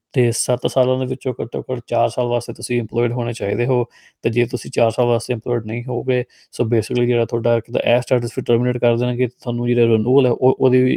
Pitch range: 115-125 Hz